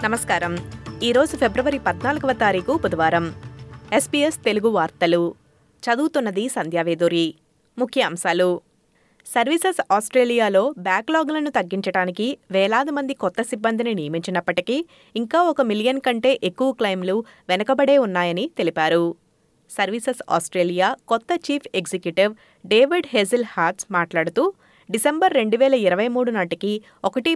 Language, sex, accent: Telugu, female, native